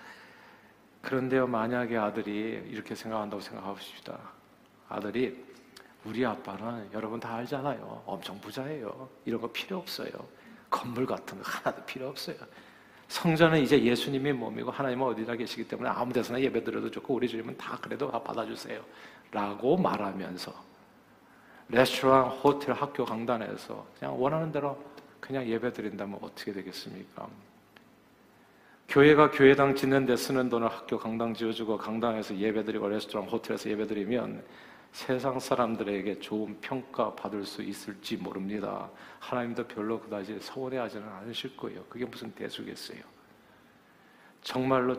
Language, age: Korean, 40-59